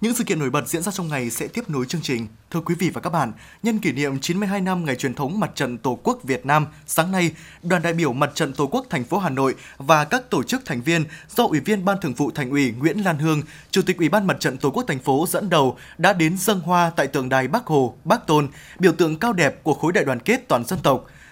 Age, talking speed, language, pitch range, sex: 20-39, 280 wpm, Vietnamese, 145-200 Hz, male